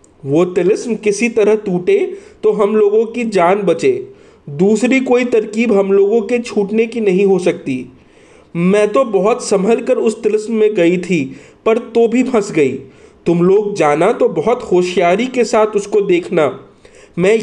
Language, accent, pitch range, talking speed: Hindi, native, 185-245 Hz, 160 wpm